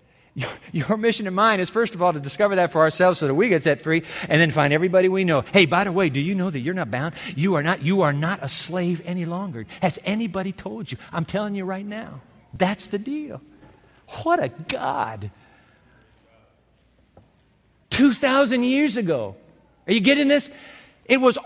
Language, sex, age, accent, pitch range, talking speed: English, male, 50-69, American, 165-245 Hz, 190 wpm